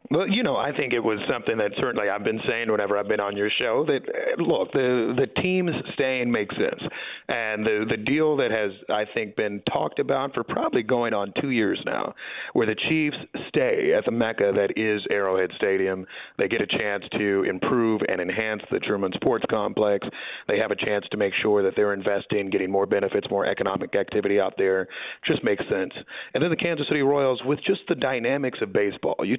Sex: male